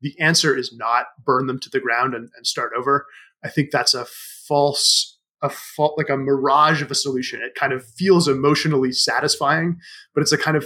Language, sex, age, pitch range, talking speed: English, male, 20-39, 135-175 Hz, 210 wpm